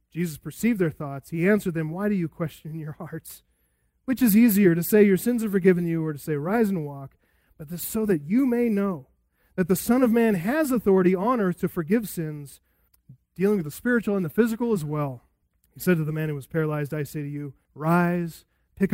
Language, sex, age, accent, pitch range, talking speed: English, male, 30-49, American, 155-210 Hz, 220 wpm